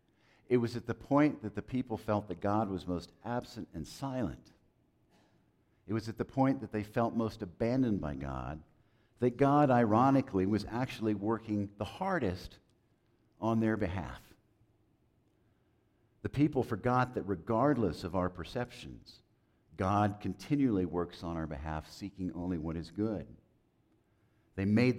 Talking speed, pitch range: 145 wpm, 95-120 Hz